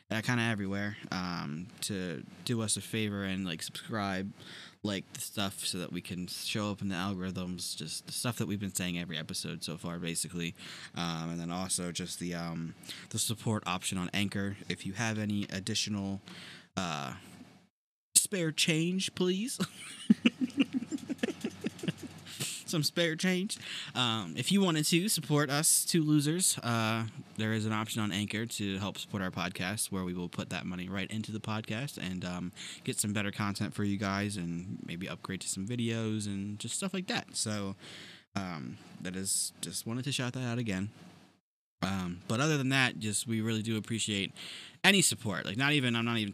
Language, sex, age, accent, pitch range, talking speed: English, male, 20-39, American, 95-125 Hz, 185 wpm